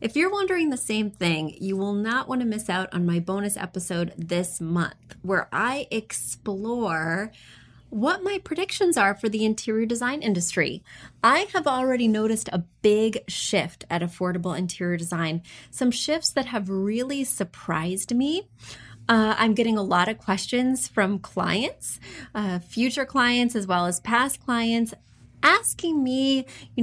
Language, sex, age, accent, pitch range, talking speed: English, female, 30-49, American, 180-245 Hz, 155 wpm